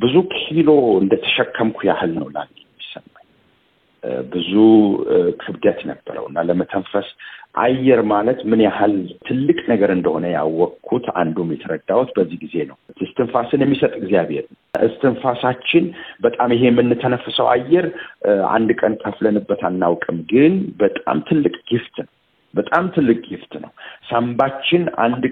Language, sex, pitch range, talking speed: Amharic, male, 115-170 Hz, 110 wpm